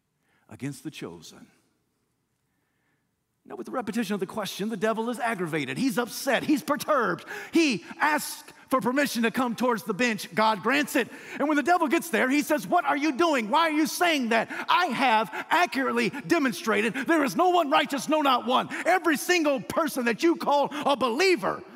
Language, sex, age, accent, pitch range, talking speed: English, male, 40-59, American, 180-290 Hz, 185 wpm